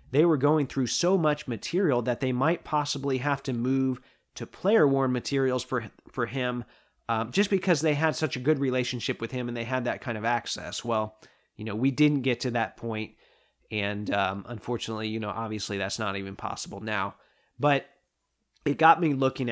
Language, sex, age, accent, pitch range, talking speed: English, male, 30-49, American, 115-145 Hz, 195 wpm